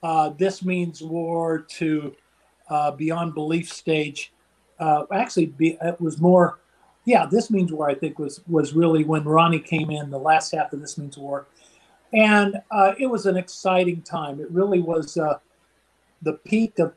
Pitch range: 155-180 Hz